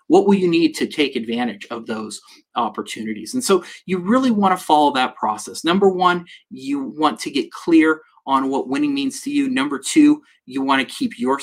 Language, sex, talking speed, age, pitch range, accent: English, male, 205 wpm, 30-49, 160-240 Hz, American